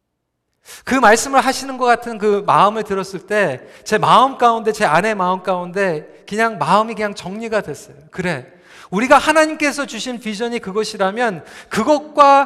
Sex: male